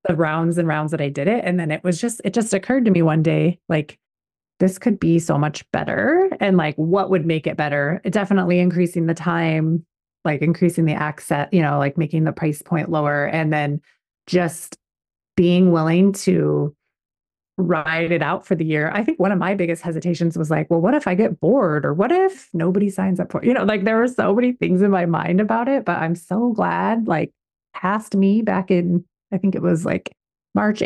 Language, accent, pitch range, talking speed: English, American, 170-205 Hz, 220 wpm